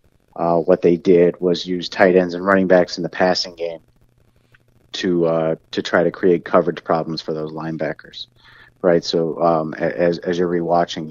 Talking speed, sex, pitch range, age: 180 wpm, male, 85-100 Hz, 30-49